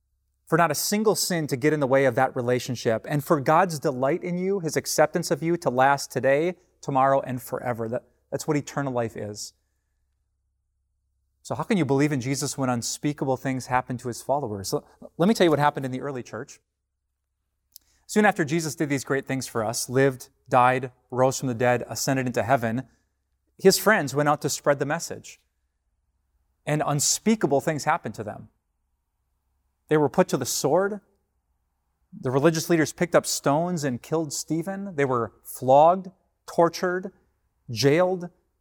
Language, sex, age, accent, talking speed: English, male, 30-49, American, 170 wpm